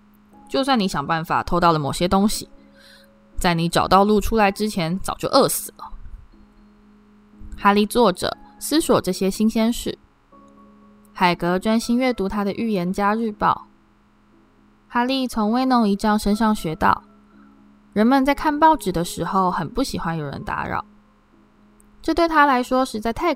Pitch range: 150-215 Hz